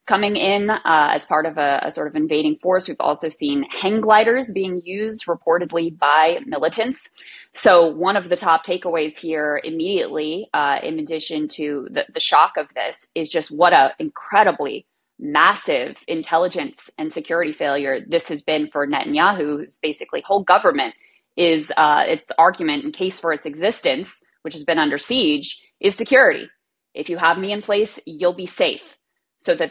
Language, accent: English, American